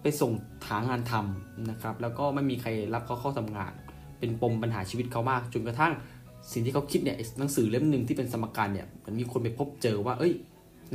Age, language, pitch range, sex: 20-39, Thai, 105-130 Hz, male